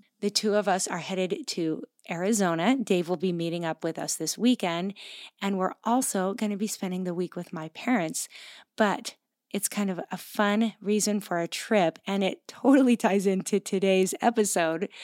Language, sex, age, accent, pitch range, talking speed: English, female, 30-49, American, 180-225 Hz, 185 wpm